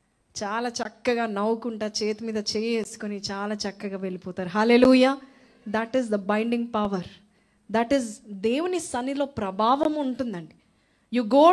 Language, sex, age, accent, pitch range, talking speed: Telugu, female, 20-39, native, 210-295 Hz, 125 wpm